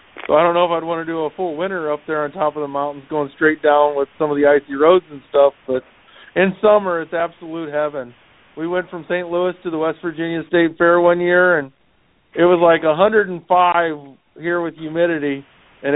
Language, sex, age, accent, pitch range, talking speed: English, male, 50-69, American, 145-175 Hz, 220 wpm